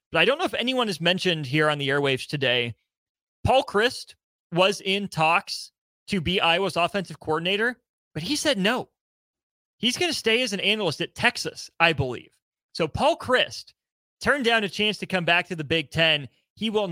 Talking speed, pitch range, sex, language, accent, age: 190 wpm, 155-200 Hz, male, English, American, 30-49